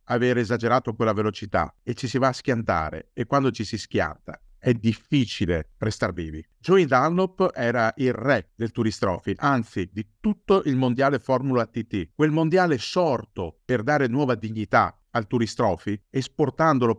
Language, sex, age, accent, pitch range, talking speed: Italian, male, 50-69, native, 100-135 Hz, 150 wpm